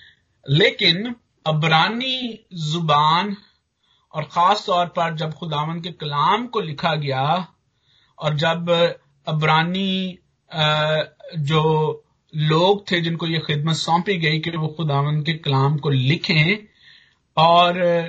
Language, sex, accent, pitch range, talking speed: Hindi, male, native, 145-175 Hz, 110 wpm